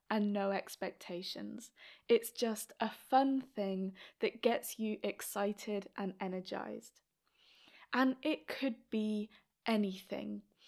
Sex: female